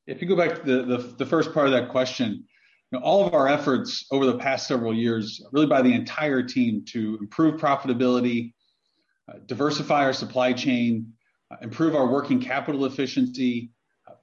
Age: 40-59